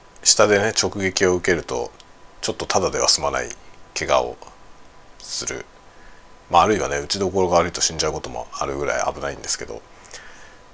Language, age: Japanese, 40-59